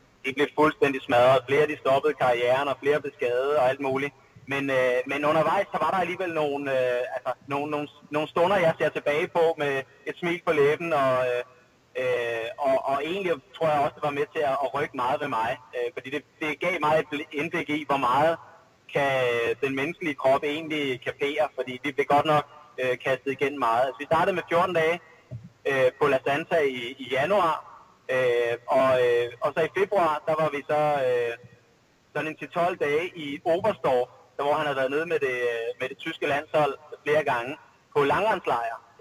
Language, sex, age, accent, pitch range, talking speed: Danish, male, 30-49, native, 135-170 Hz, 205 wpm